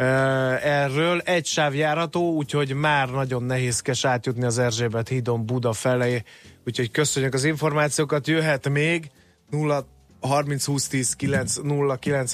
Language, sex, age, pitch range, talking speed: Hungarian, male, 30-49, 120-145 Hz, 95 wpm